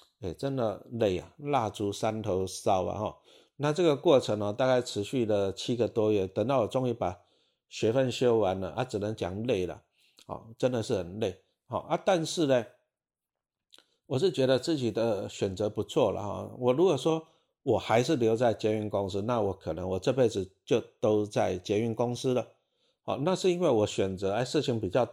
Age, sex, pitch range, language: 50-69, male, 100-130 Hz, Chinese